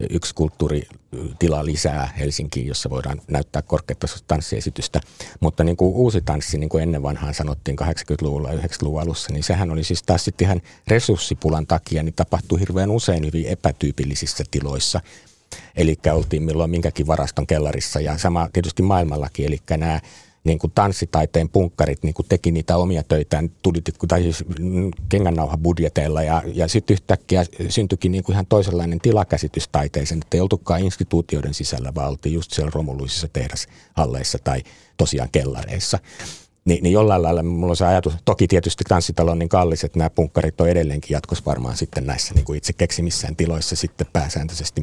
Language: Finnish